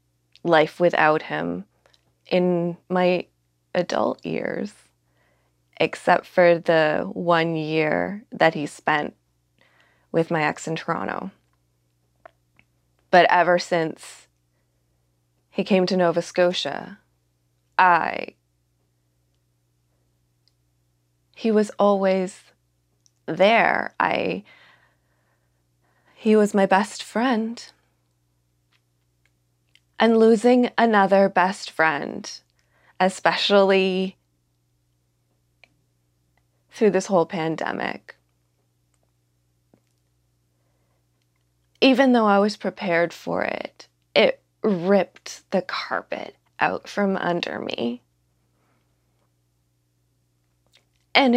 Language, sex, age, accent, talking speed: English, female, 20-39, American, 75 wpm